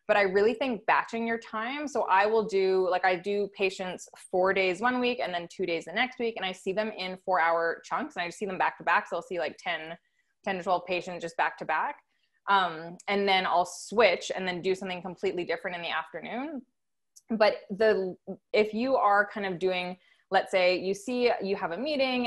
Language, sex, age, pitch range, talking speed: English, female, 20-39, 185-230 Hz, 230 wpm